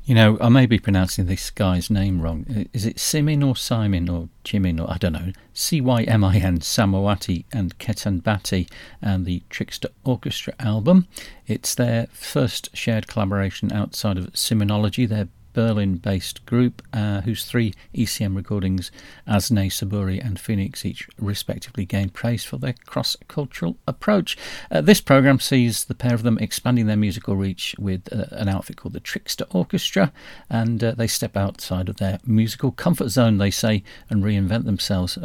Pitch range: 95-120 Hz